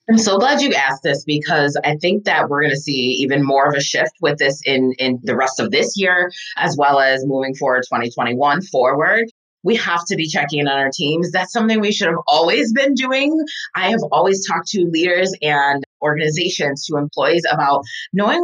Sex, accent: female, American